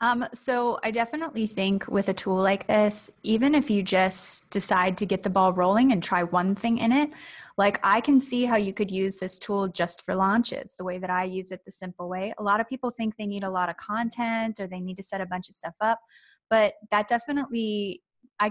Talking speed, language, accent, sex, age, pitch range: 235 wpm, English, American, female, 20-39, 190-235 Hz